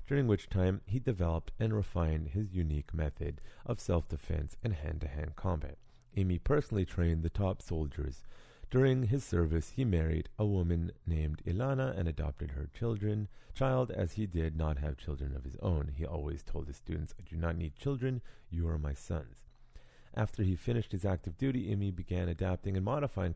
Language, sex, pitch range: English, male, 80-105 Hz